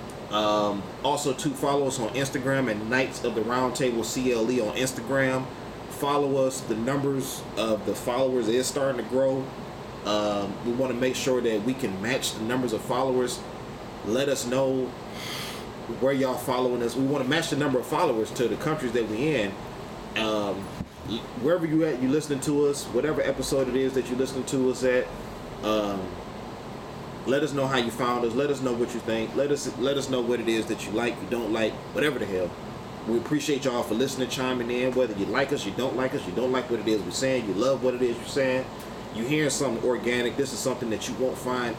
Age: 20-39